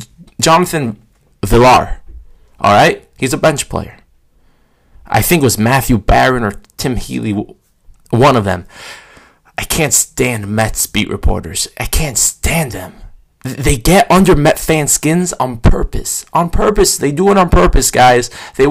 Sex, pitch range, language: male, 100-130 Hz, English